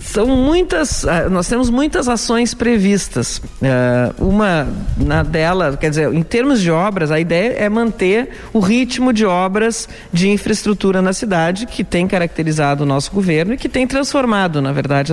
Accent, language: Brazilian, Portuguese